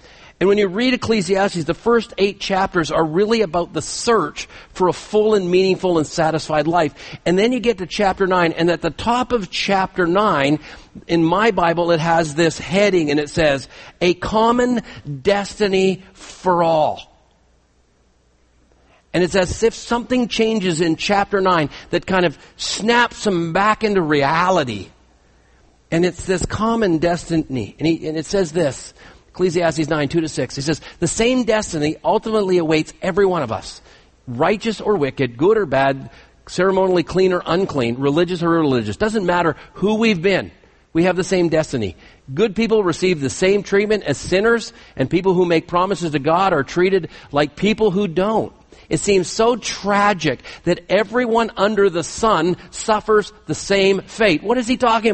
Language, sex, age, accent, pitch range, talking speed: English, male, 50-69, American, 160-215 Hz, 170 wpm